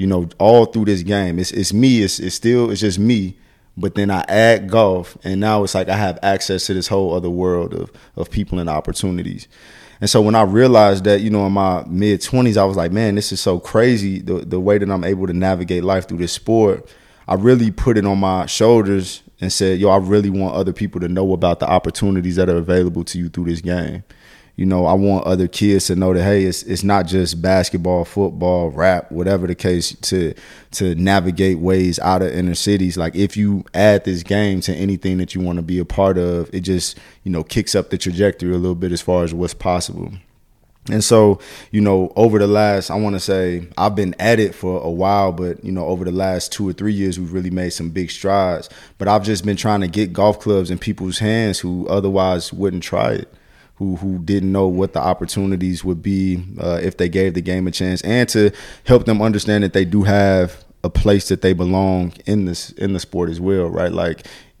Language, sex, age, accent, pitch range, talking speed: English, male, 20-39, American, 90-100 Hz, 230 wpm